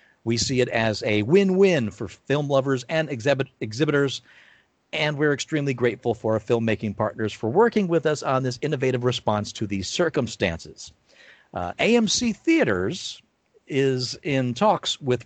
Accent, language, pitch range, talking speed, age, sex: American, English, 115-155 Hz, 150 wpm, 50-69, male